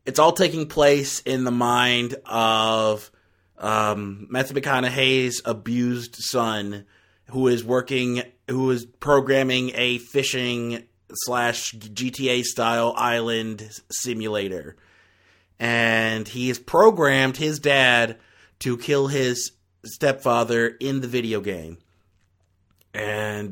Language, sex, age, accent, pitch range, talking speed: English, male, 30-49, American, 100-135 Hz, 95 wpm